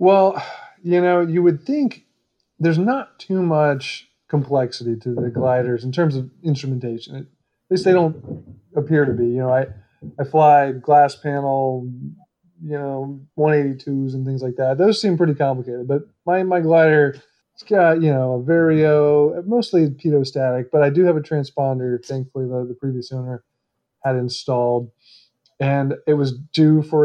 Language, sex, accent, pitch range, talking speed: English, male, American, 130-160 Hz, 160 wpm